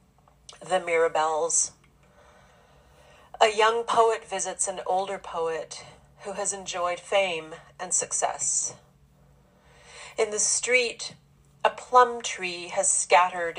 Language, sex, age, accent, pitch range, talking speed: English, female, 40-59, American, 165-210 Hz, 100 wpm